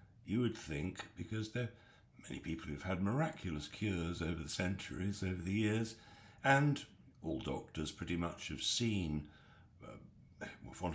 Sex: male